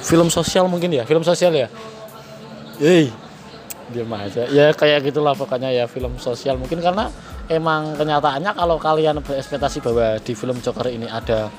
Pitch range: 120-150 Hz